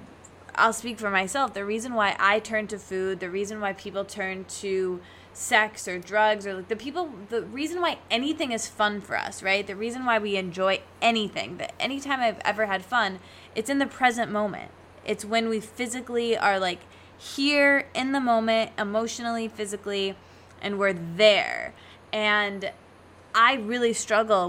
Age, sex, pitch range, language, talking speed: 20-39, female, 195-230 Hz, English, 170 wpm